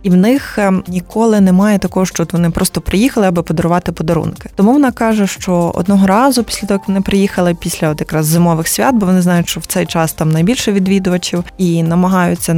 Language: Ukrainian